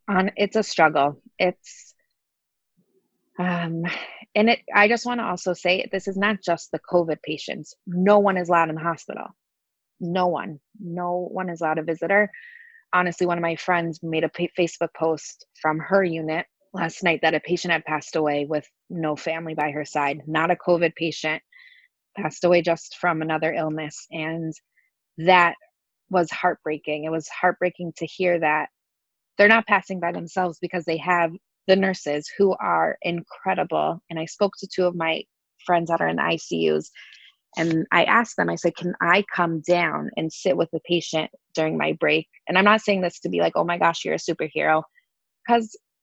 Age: 20-39